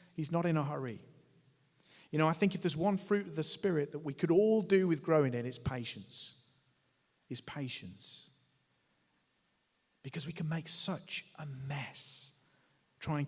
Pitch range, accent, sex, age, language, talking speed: 135-180 Hz, British, male, 40-59, English, 165 wpm